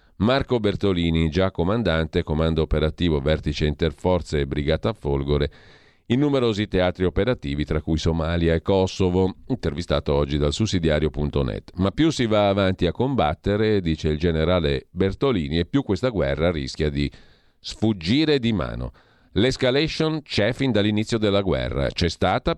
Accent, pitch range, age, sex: native, 80-110 Hz, 40-59, male